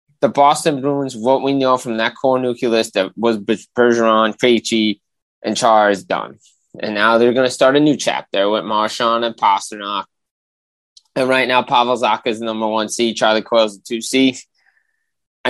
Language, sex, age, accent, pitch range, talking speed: English, male, 20-39, American, 110-130 Hz, 180 wpm